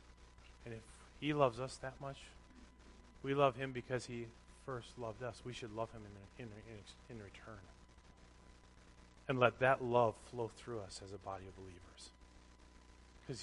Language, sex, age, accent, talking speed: English, male, 40-59, American, 160 wpm